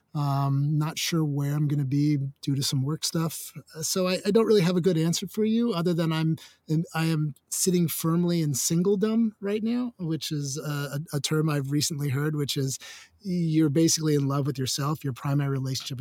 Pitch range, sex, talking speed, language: 140-170 Hz, male, 200 wpm, English